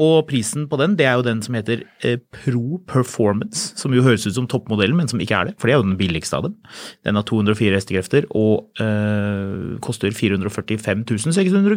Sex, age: male, 30-49